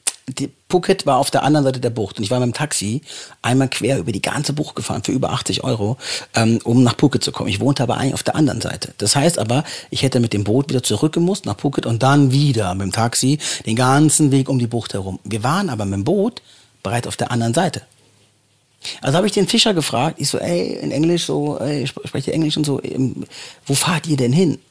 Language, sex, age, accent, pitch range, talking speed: German, male, 40-59, German, 120-155 Hz, 240 wpm